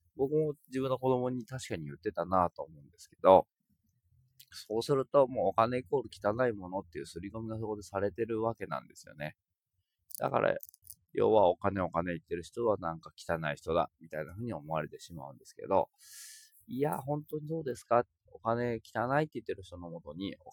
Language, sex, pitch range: Japanese, male, 90-130 Hz